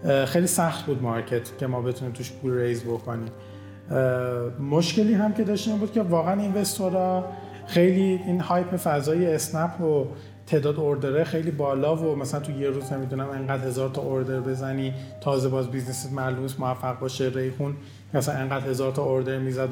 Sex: male